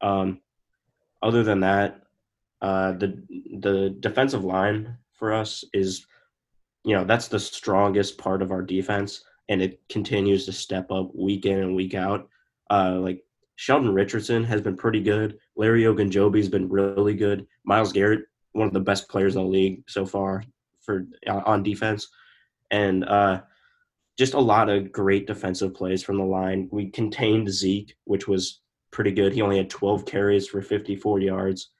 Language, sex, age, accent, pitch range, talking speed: English, male, 20-39, American, 95-105 Hz, 165 wpm